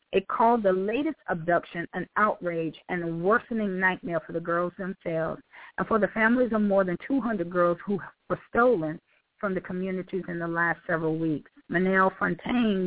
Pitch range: 165-205 Hz